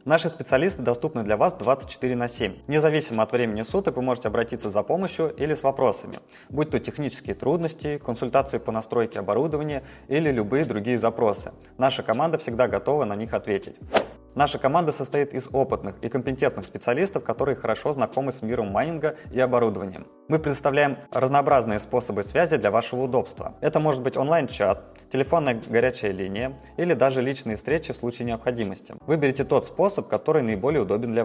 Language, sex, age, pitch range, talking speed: Russian, male, 20-39, 115-145 Hz, 160 wpm